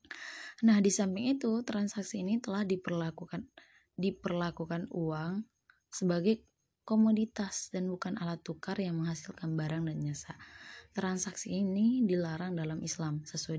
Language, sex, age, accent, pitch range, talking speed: Indonesian, female, 20-39, native, 160-195 Hz, 120 wpm